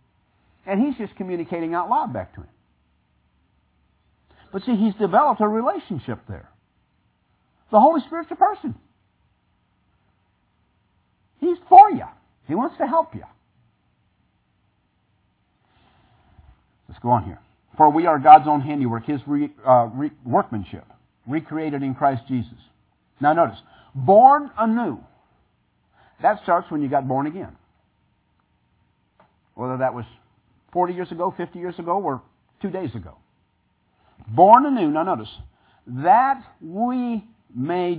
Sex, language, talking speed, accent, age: male, English, 120 wpm, American, 50-69